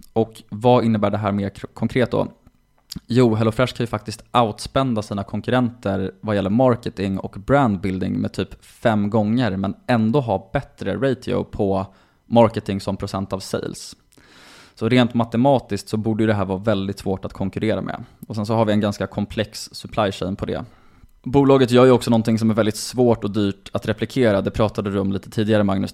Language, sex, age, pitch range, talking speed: Swedish, male, 20-39, 100-125 Hz, 190 wpm